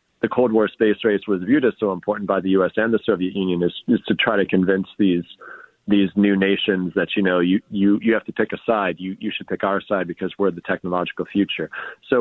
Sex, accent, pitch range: male, American, 95-105 Hz